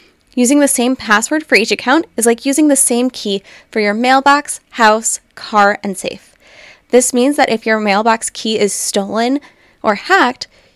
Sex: female